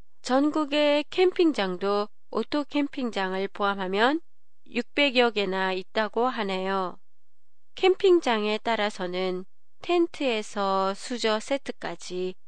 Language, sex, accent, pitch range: Japanese, female, Korean, 195-270 Hz